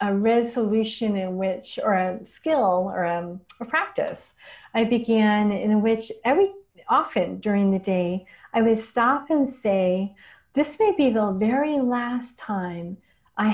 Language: English